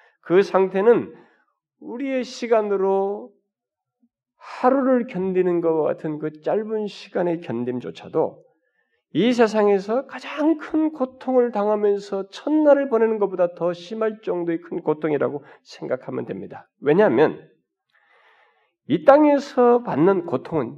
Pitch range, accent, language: 220-325 Hz, native, Korean